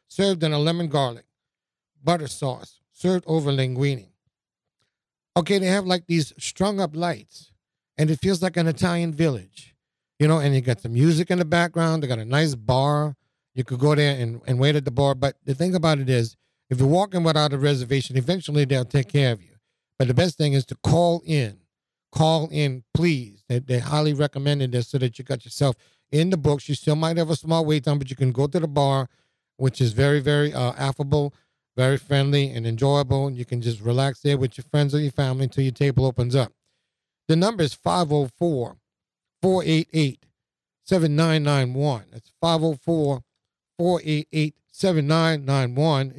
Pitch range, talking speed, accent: 130-165 Hz, 180 wpm, American